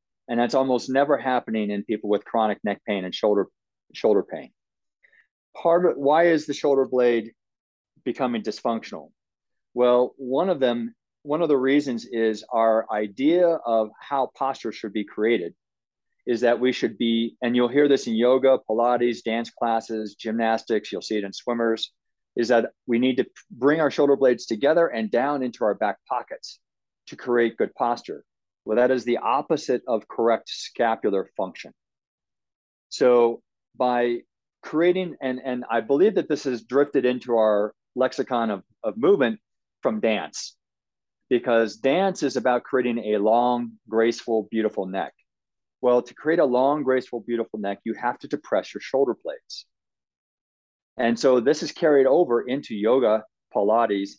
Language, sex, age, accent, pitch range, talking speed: English, male, 40-59, American, 115-130 Hz, 160 wpm